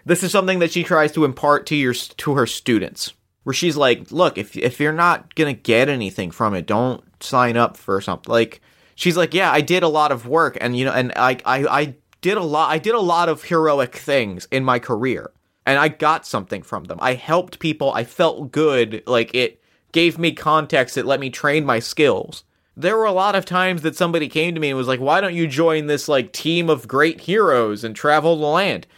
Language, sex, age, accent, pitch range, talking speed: English, male, 30-49, American, 125-165 Hz, 235 wpm